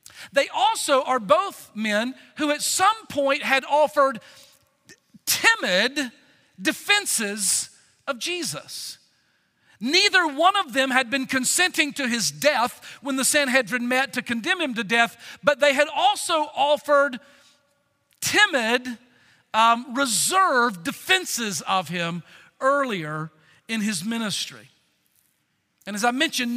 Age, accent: 50-69, American